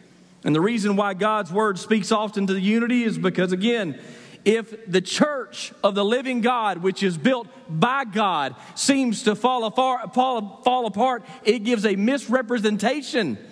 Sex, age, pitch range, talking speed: male, 40-59, 205-250 Hz, 155 wpm